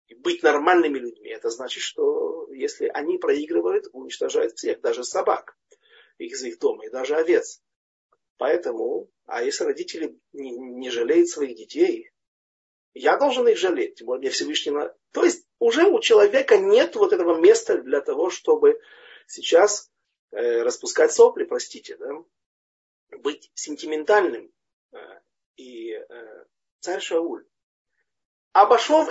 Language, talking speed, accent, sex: Russian, 120 wpm, native, male